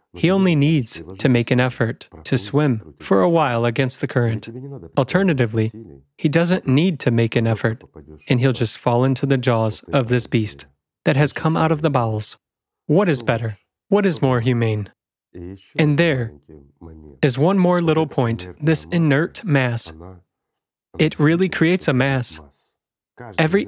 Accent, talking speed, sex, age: American, 160 wpm, male, 30-49